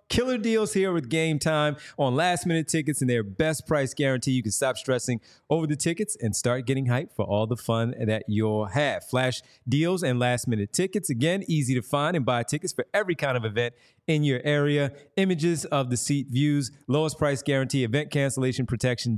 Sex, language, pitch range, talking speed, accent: male, English, 120-155 Hz, 195 wpm, American